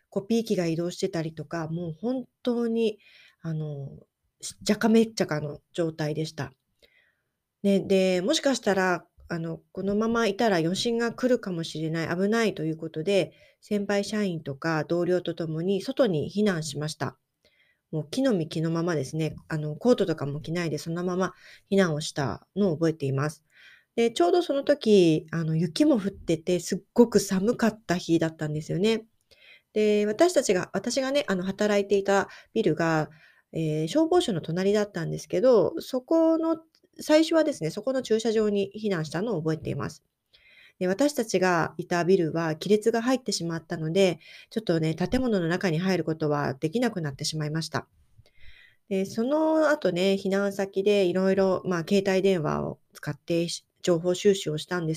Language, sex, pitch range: Japanese, female, 160-220 Hz